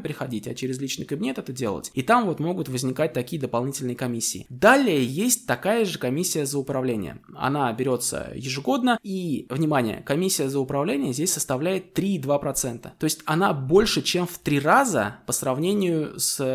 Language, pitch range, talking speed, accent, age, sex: Russian, 130-160 Hz, 160 wpm, native, 20-39, male